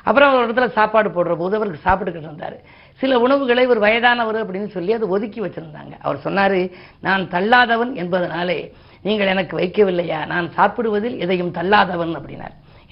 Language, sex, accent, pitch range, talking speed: Tamil, female, native, 175-225 Hz, 140 wpm